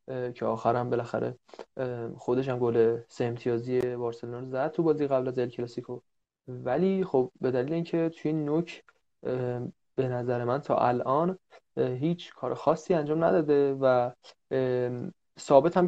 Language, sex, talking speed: Persian, male, 130 wpm